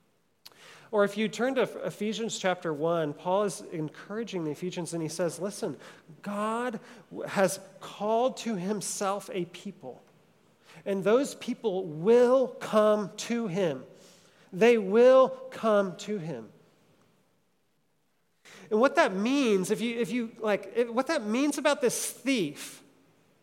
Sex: male